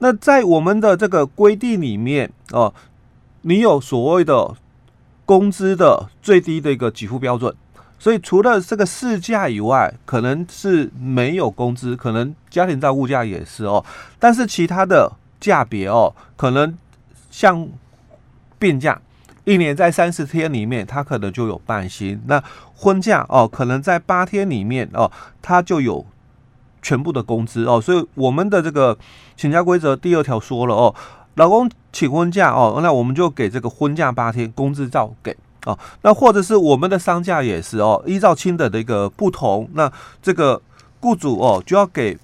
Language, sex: Chinese, male